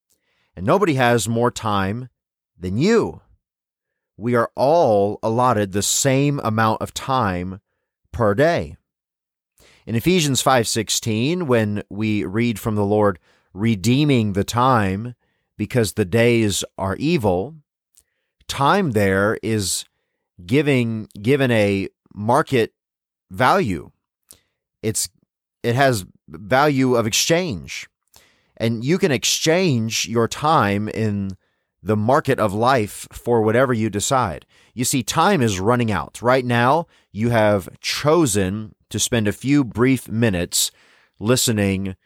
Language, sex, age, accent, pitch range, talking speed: English, male, 30-49, American, 100-125 Hz, 115 wpm